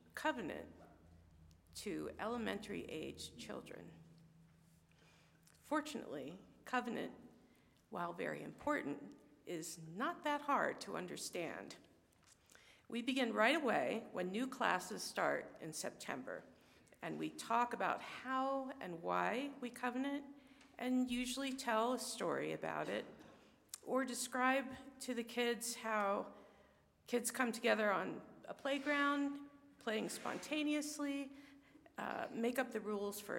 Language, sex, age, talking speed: English, female, 50-69, 110 wpm